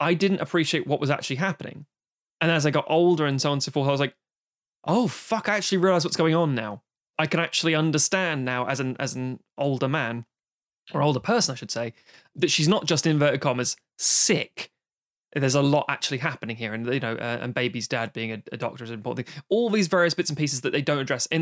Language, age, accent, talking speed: English, 20-39, British, 240 wpm